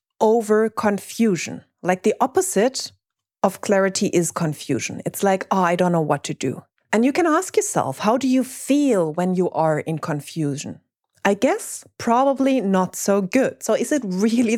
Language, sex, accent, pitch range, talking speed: English, female, German, 180-255 Hz, 175 wpm